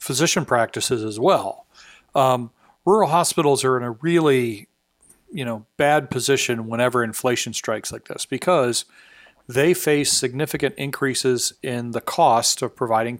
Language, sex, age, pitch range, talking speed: English, male, 40-59, 115-140 Hz, 135 wpm